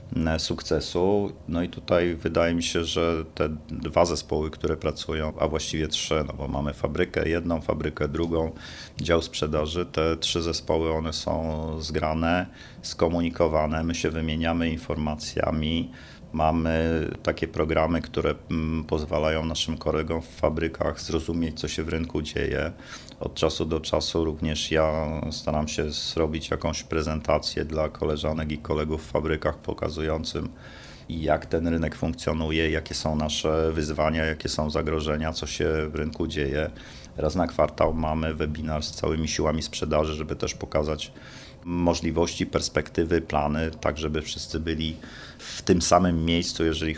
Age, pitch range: 40-59, 80-85 Hz